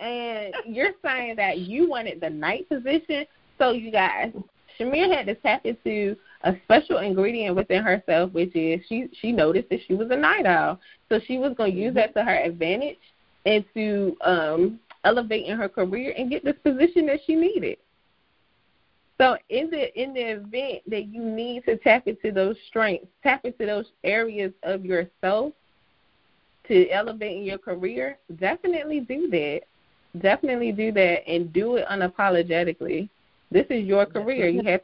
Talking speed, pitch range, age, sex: 170 wpm, 180-235 Hz, 20-39, female